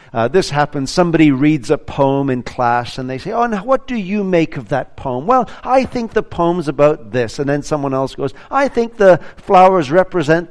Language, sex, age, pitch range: English, male, 50-69, 125-175 Hz